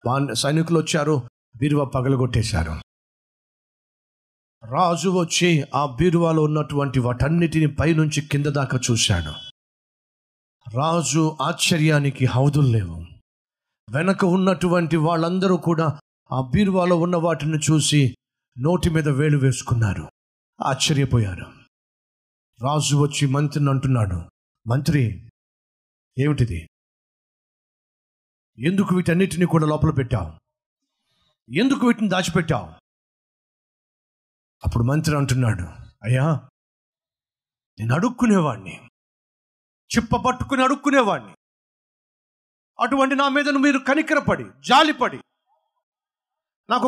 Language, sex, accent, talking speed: Telugu, male, native, 80 wpm